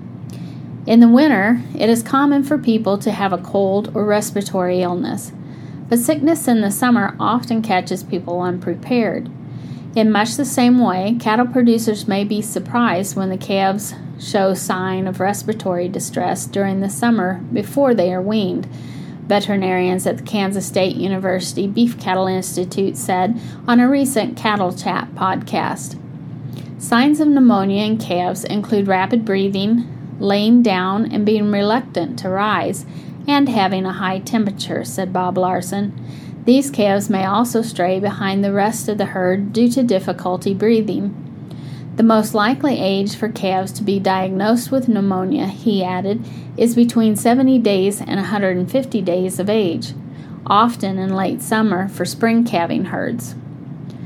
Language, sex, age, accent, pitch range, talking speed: English, female, 30-49, American, 185-230 Hz, 150 wpm